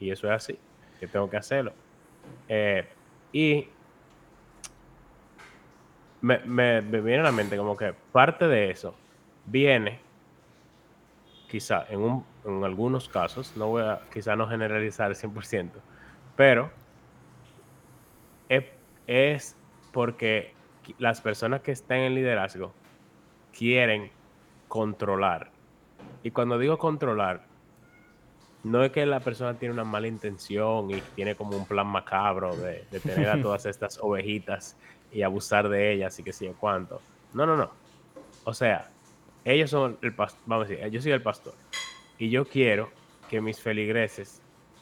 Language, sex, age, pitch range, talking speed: Spanish, male, 20-39, 105-125 Hz, 140 wpm